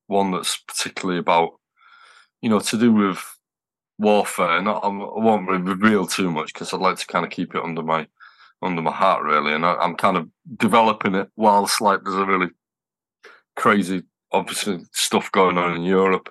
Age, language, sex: 20-39, English, male